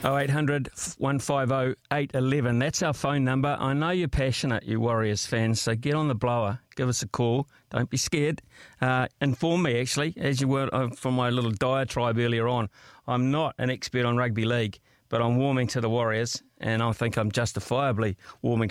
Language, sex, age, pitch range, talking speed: English, male, 50-69, 125-150 Hz, 180 wpm